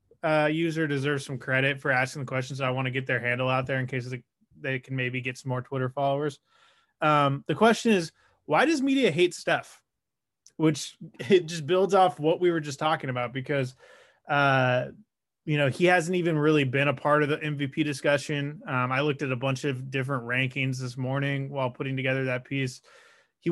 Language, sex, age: English, male, 20-39